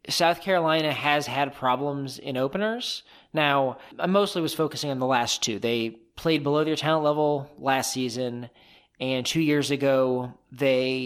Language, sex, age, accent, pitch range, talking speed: English, male, 20-39, American, 125-160 Hz, 155 wpm